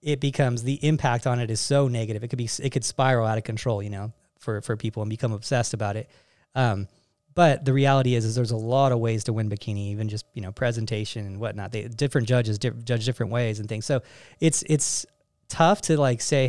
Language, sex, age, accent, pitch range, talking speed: English, male, 20-39, American, 115-145 Hz, 235 wpm